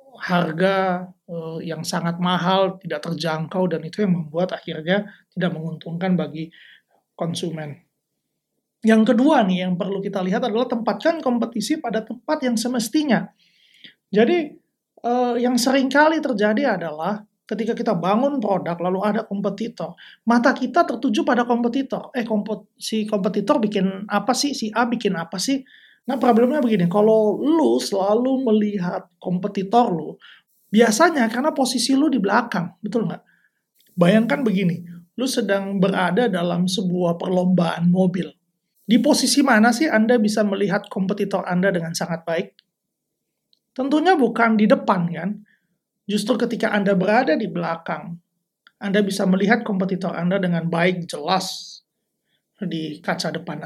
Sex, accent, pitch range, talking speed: male, native, 180-240 Hz, 135 wpm